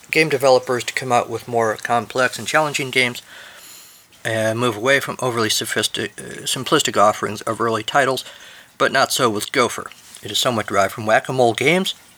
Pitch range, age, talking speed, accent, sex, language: 110-140 Hz, 50-69, 170 wpm, American, male, English